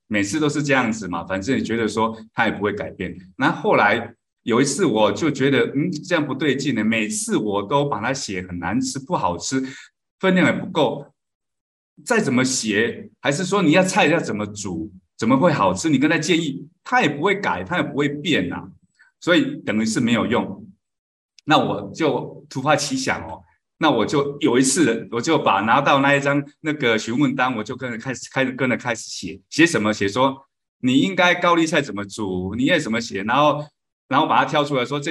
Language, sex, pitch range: Chinese, male, 105-150 Hz